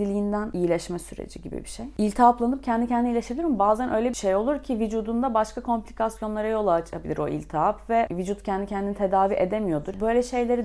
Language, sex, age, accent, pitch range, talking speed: Turkish, female, 30-49, native, 185-230 Hz, 180 wpm